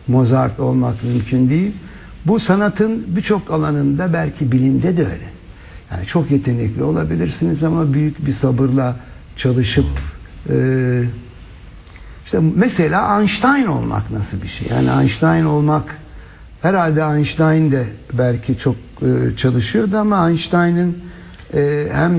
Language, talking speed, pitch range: Turkish, 110 wpm, 120-160 Hz